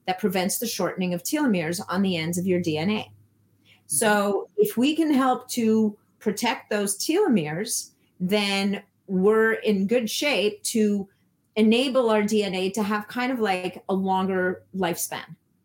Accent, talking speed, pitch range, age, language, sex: American, 145 wpm, 180-220 Hz, 40-59, English, female